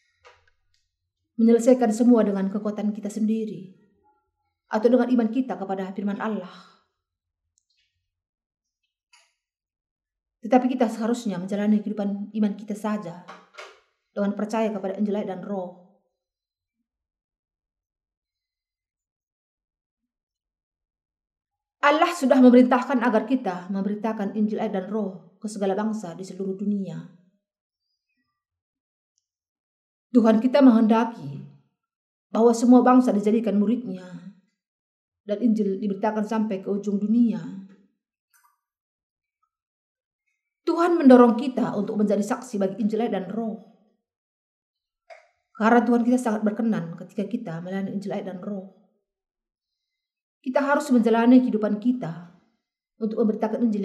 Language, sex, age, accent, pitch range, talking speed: Indonesian, female, 30-49, native, 185-235 Hz, 100 wpm